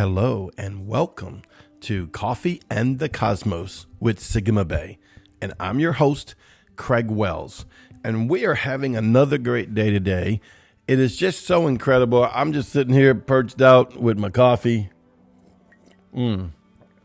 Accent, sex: American, male